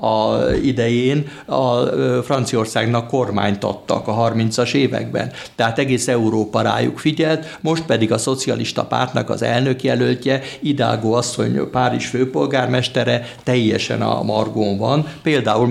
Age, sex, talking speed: 60-79, male, 120 wpm